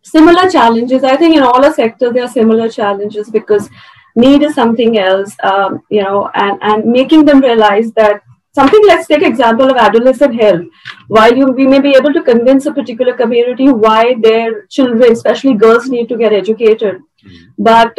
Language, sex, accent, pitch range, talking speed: English, female, Indian, 220-265 Hz, 175 wpm